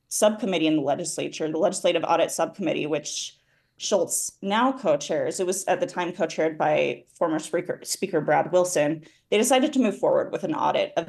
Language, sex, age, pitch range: English, female, 20-39, 165-225 Hz